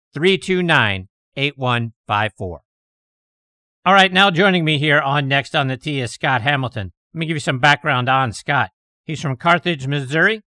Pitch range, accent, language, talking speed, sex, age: 135-160 Hz, American, English, 190 wpm, male, 50-69